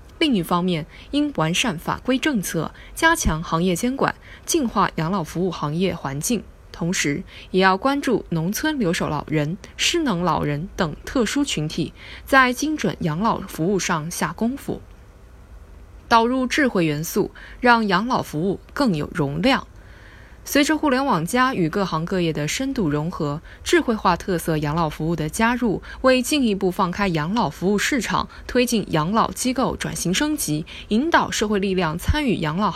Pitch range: 170-255 Hz